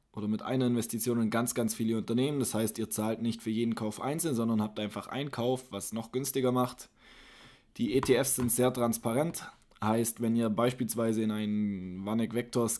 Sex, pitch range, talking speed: male, 110-125 Hz, 190 wpm